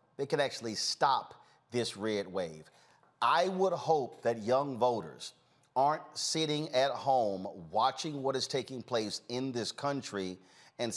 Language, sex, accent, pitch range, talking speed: English, male, American, 120-155 Hz, 140 wpm